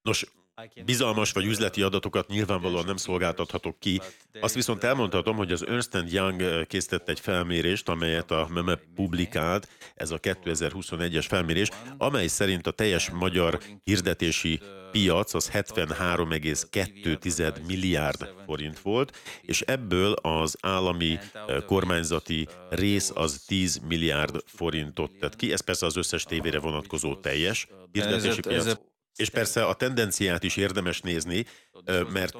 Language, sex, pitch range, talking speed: Hungarian, male, 85-100 Hz, 125 wpm